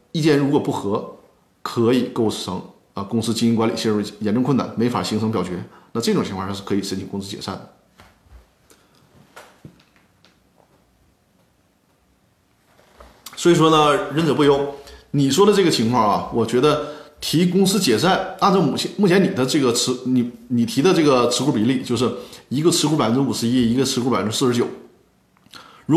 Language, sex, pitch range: Chinese, male, 110-145 Hz